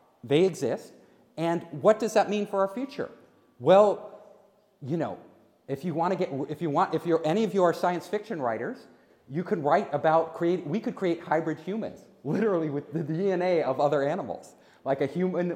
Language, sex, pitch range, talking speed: English, male, 140-200 Hz, 195 wpm